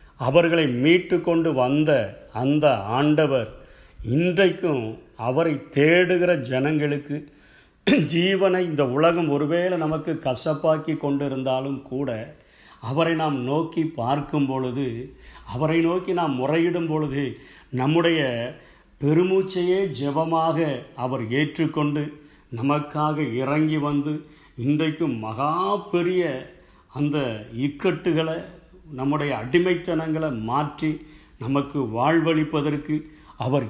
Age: 50-69